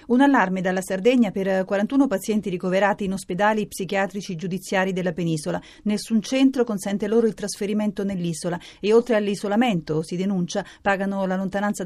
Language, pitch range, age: Italian, 180-215 Hz, 40-59